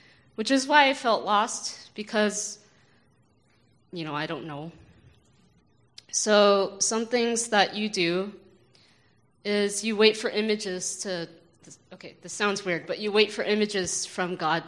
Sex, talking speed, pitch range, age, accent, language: female, 145 wpm, 165-200 Hz, 20-39, American, English